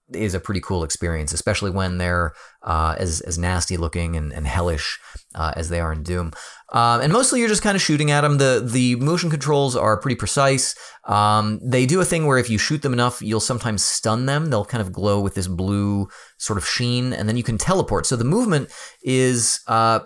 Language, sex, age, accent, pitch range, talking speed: English, male, 30-49, American, 90-130 Hz, 220 wpm